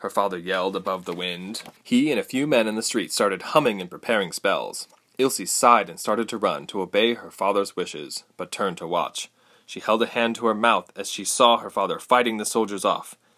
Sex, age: male, 20-39